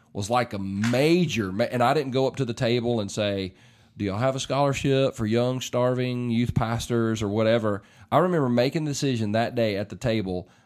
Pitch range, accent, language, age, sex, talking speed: 110-135 Hz, American, English, 40-59, male, 210 wpm